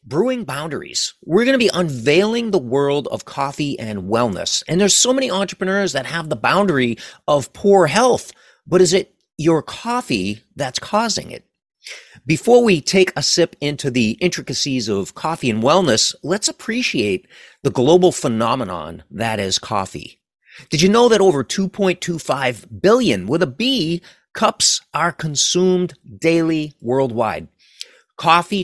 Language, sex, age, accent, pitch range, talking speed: English, male, 40-59, American, 125-185 Hz, 145 wpm